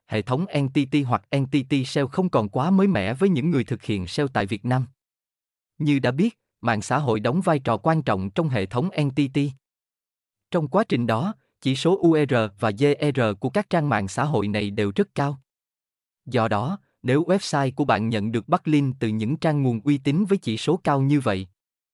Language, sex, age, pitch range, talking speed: Vietnamese, male, 20-39, 110-150 Hz, 205 wpm